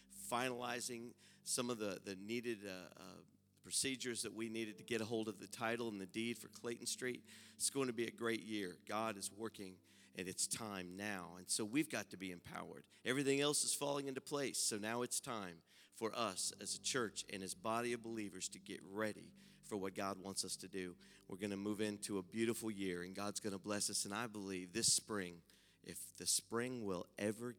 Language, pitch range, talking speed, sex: English, 95-120 Hz, 220 wpm, male